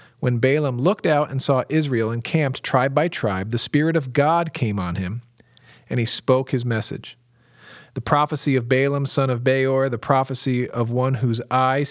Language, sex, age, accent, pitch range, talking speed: English, male, 40-59, American, 115-140 Hz, 180 wpm